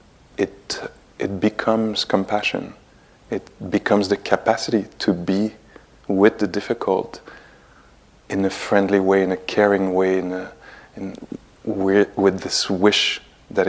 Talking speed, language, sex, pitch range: 125 wpm, English, male, 90-100 Hz